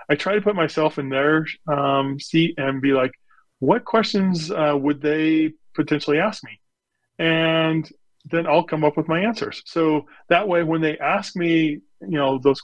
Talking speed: 180 wpm